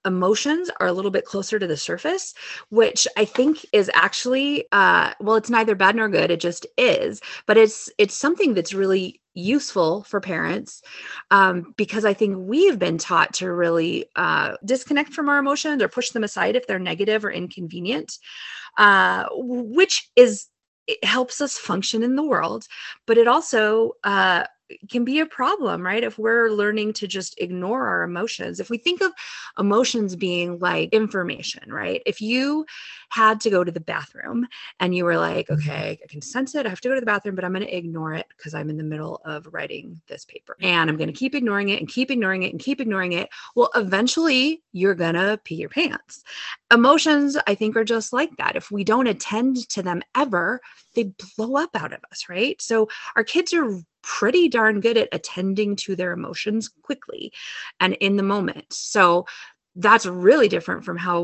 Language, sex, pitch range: English, female, 185-260 Hz